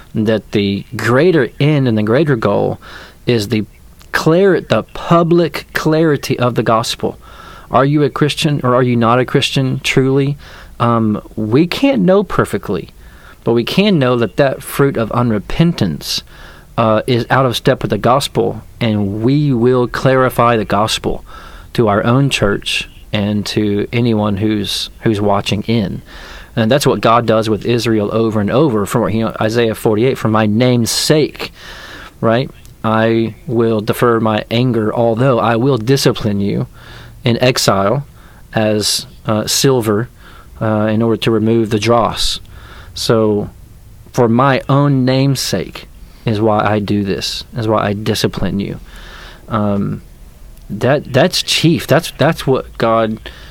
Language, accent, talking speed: English, American, 150 wpm